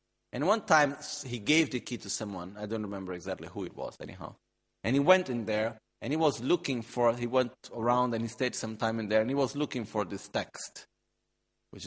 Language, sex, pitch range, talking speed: Italian, male, 95-125 Hz, 230 wpm